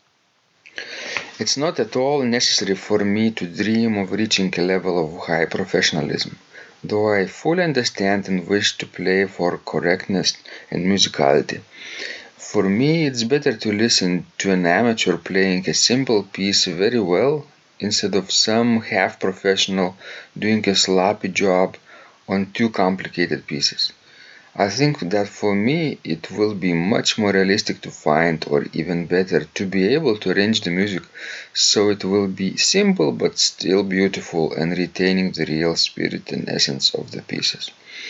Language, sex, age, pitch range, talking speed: English, male, 40-59, 95-110 Hz, 155 wpm